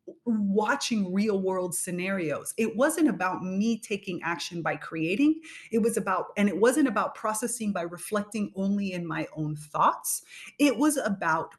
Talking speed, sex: 155 wpm, female